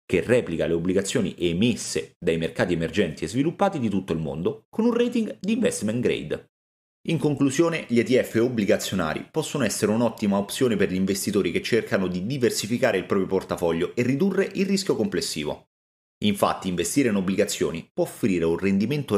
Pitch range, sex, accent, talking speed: 100-155 Hz, male, native, 165 wpm